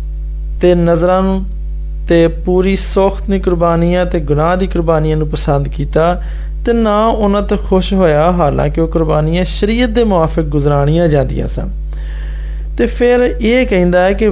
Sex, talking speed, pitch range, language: male, 50 wpm, 145-195 Hz, Hindi